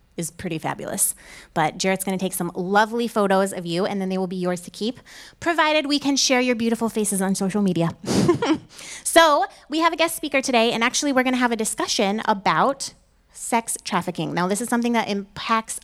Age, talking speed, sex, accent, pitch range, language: 20-39, 200 wpm, female, American, 200-255 Hz, English